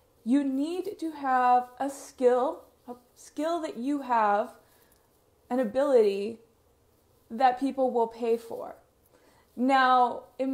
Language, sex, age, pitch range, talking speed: English, female, 20-39, 225-260 Hz, 115 wpm